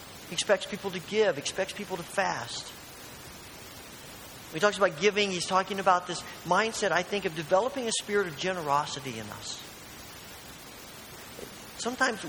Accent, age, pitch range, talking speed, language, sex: American, 40-59, 140-195 Hz, 145 wpm, English, male